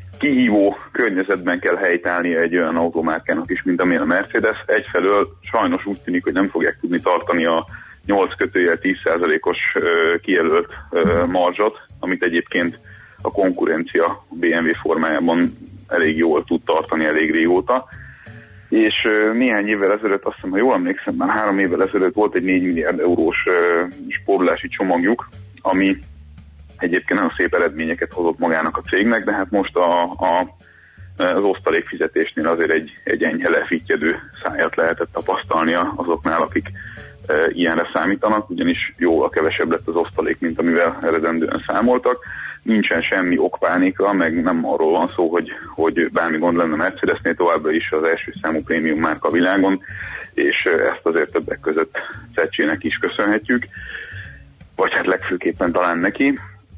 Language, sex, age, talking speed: Hungarian, male, 30-49, 150 wpm